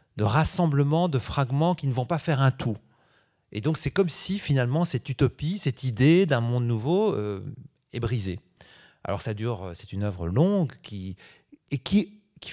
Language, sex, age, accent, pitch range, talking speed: French, male, 40-59, French, 110-150 Hz, 180 wpm